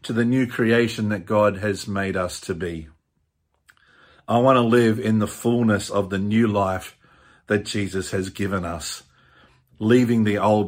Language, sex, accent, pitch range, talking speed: English, male, Australian, 105-125 Hz, 170 wpm